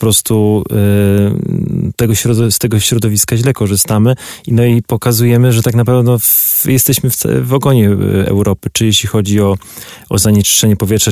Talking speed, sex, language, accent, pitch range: 130 wpm, male, Polish, native, 100-120 Hz